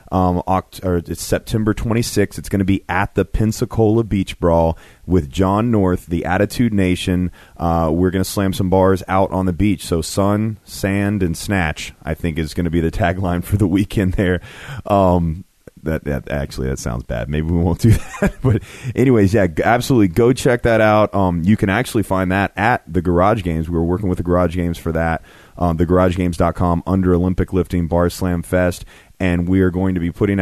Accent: American